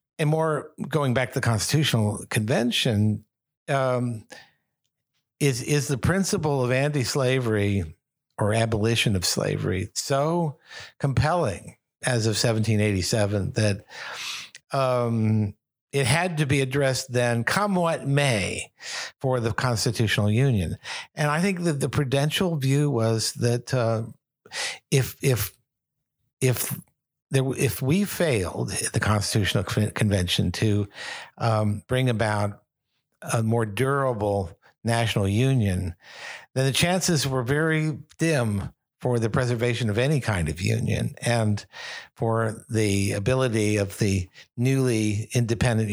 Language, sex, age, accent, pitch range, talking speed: English, male, 60-79, American, 110-140 Hz, 120 wpm